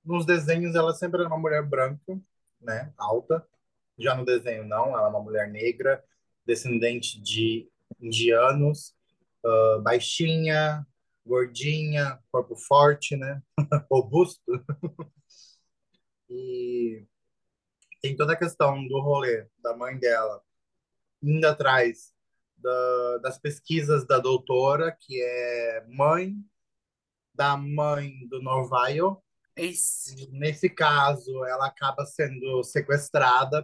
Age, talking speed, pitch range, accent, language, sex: 20-39, 105 wpm, 125-150 Hz, Brazilian, Portuguese, male